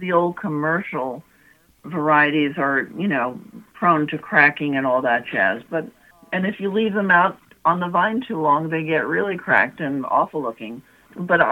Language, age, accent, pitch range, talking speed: English, 60-79, American, 130-160 Hz, 175 wpm